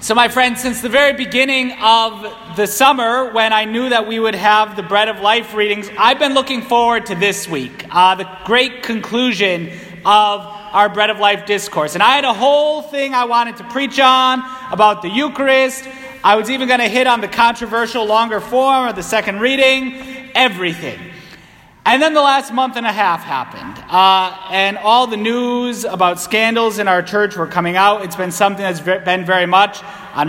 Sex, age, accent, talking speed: male, 30-49, American, 195 wpm